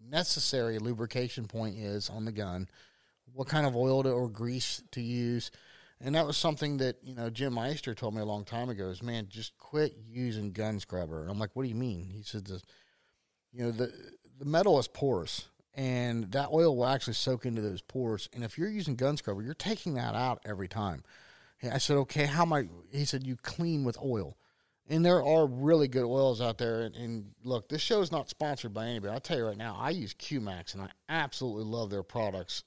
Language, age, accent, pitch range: English, 40-59, American, 115-140 Hz